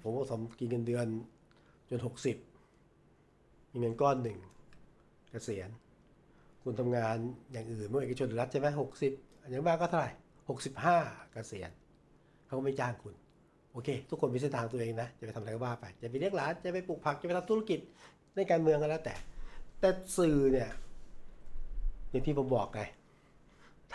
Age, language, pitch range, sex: 60-79, Thai, 115-150 Hz, male